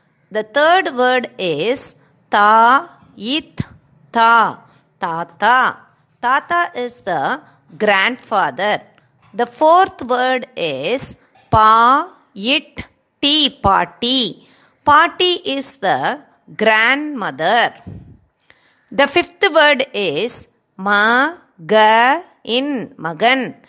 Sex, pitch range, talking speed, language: female, 225-310 Hz, 65 wpm, Tamil